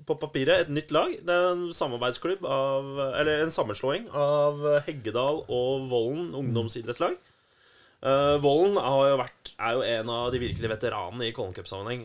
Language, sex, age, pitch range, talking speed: English, male, 20-39, 110-135 Hz, 155 wpm